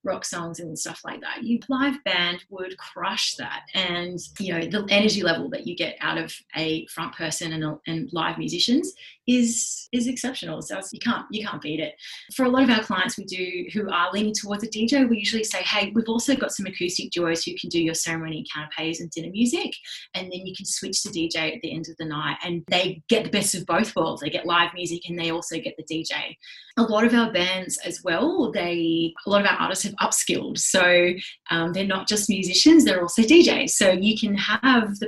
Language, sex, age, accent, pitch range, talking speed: English, female, 20-39, Australian, 170-210 Hz, 230 wpm